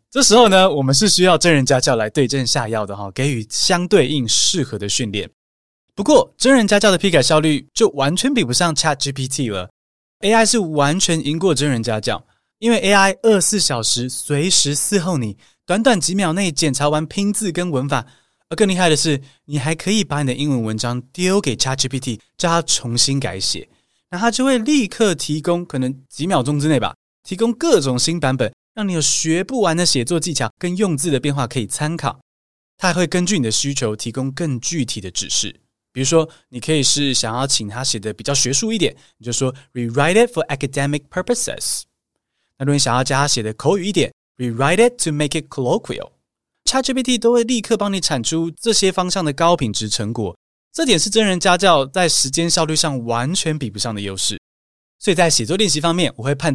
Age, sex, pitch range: 20-39, male, 125-185 Hz